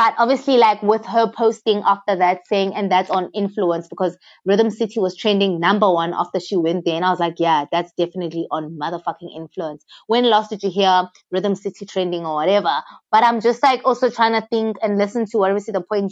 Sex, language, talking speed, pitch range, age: female, English, 215 wpm, 180-220 Hz, 20-39